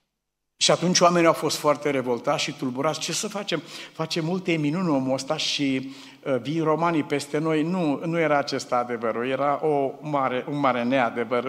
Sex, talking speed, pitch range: male, 185 wpm, 130-160 Hz